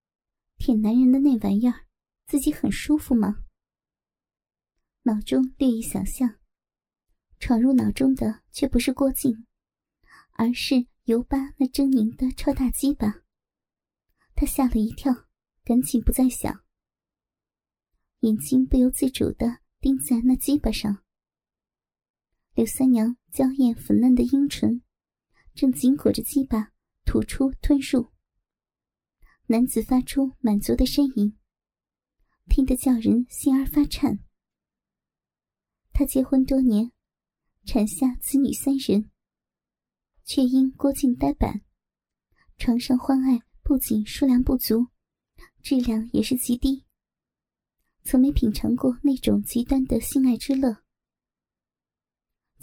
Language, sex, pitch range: Chinese, male, 235-270 Hz